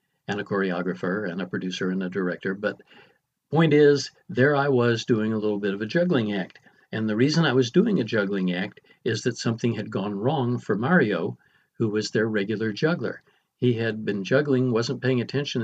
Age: 60-79